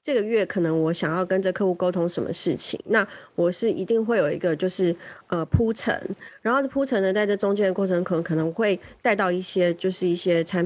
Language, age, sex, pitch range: Chinese, 30-49, female, 175-225 Hz